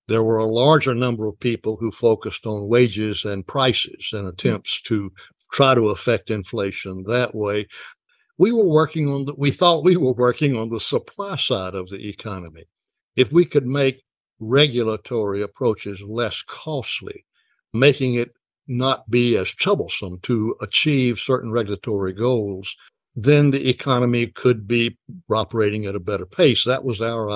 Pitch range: 110-145 Hz